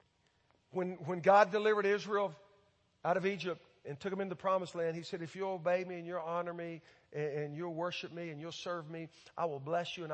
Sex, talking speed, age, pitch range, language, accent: male, 230 wpm, 50-69, 160-220 Hz, English, American